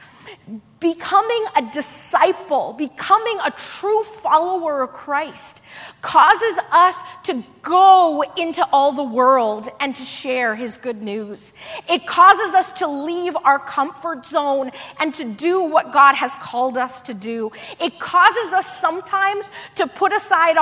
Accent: American